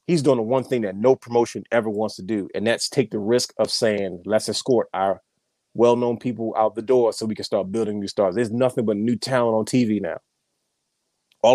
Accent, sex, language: American, male, English